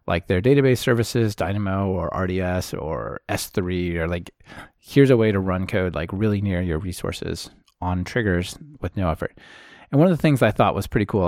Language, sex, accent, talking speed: English, male, American, 195 wpm